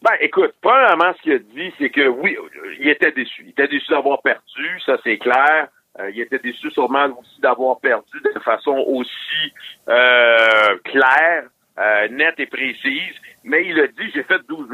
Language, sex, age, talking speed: French, male, 60-79, 185 wpm